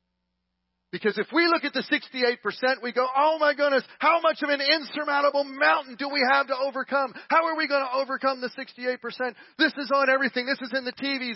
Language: English